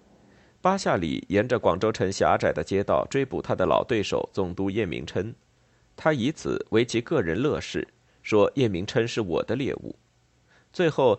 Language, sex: Chinese, male